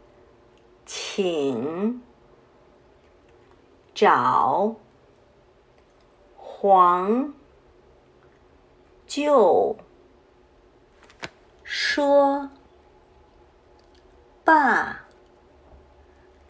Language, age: Chinese, 50-69